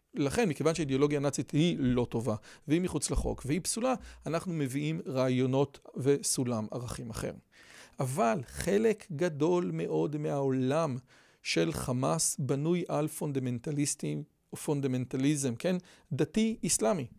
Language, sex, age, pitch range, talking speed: Hebrew, male, 40-59, 130-180 Hz, 110 wpm